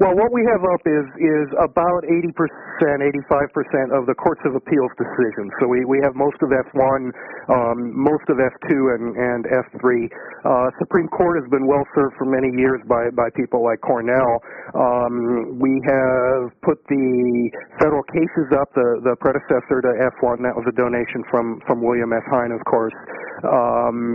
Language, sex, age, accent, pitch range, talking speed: English, male, 50-69, American, 120-140 Hz, 180 wpm